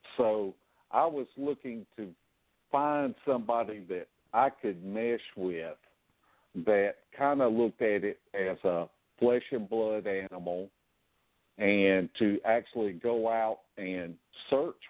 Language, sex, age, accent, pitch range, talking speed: English, male, 60-79, American, 95-120 Hz, 125 wpm